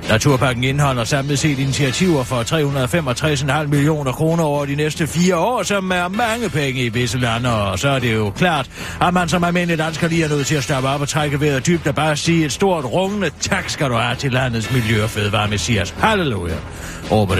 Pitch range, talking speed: 125-180 Hz, 210 wpm